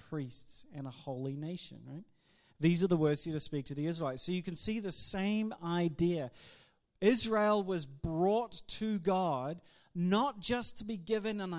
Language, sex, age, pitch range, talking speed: English, male, 40-59, 145-195 Hz, 175 wpm